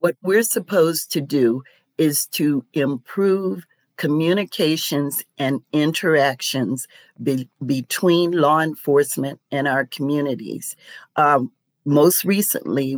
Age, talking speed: 50-69, 90 wpm